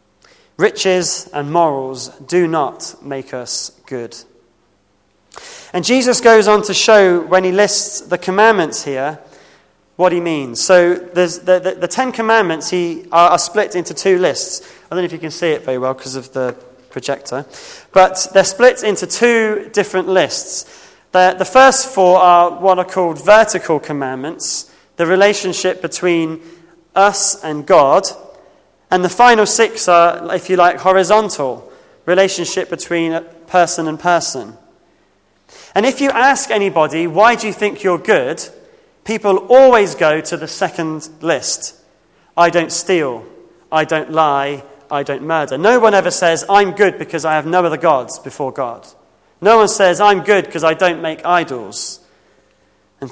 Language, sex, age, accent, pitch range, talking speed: English, male, 20-39, British, 160-200 Hz, 160 wpm